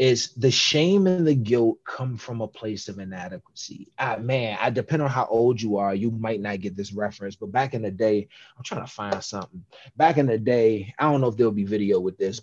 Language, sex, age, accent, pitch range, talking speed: English, male, 30-49, American, 110-145 Hz, 235 wpm